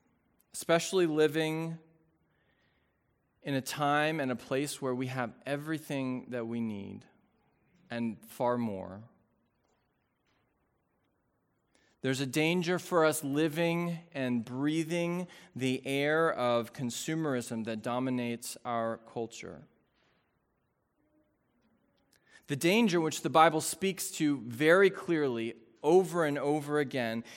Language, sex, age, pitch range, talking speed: English, male, 20-39, 125-165 Hz, 105 wpm